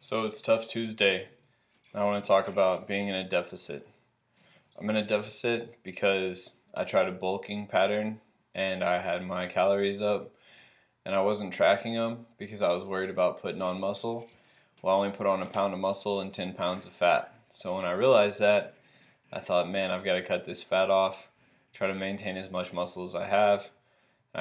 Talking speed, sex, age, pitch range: 200 wpm, male, 20-39, 95-105 Hz